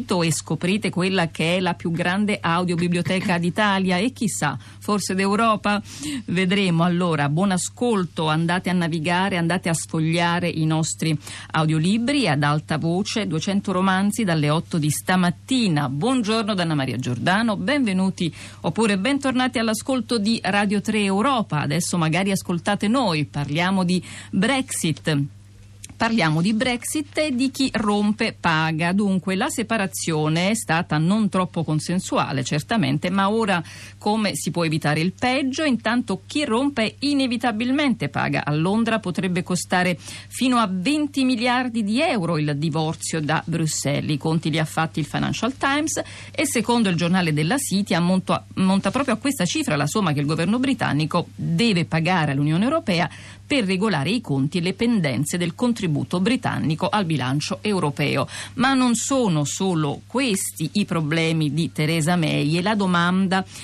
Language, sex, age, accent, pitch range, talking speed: Italian, female, 50-69, native, 160-220 Hz, 145 wpm